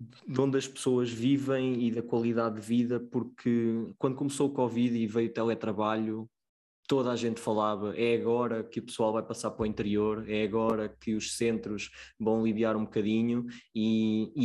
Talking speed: 185 wpm